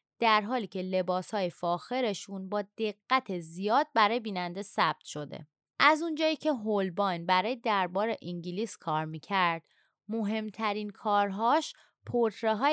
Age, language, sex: 20-39, Persian, female